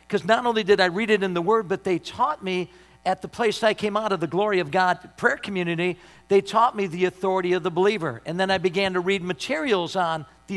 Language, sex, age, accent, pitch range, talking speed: English, male, 50-69, American, 190-255 Hz, 250 wpm